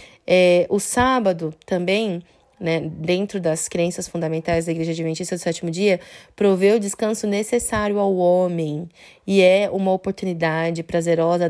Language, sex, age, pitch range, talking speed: Portuguese, female, 20-39, 170-205 Hz, 130 wpm